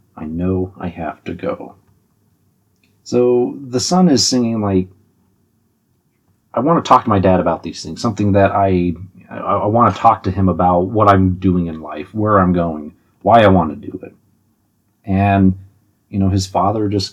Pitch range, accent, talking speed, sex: 95-115 Hz, American, 180 wpm, male